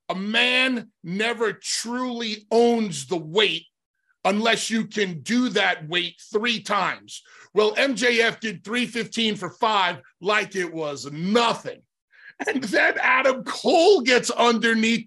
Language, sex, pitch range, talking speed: English, male, 180-245 Hz, 125 wpm